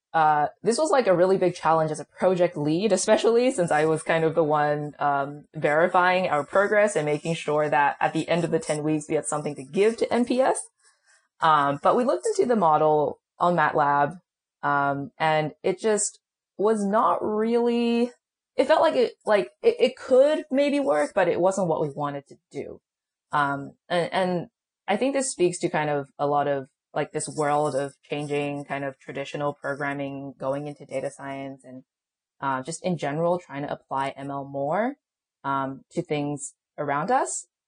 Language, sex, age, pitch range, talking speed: English, female, 20-39, 145-190 Hz, 185 wpm